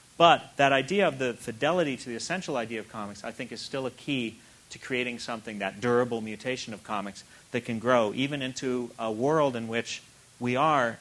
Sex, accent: male, American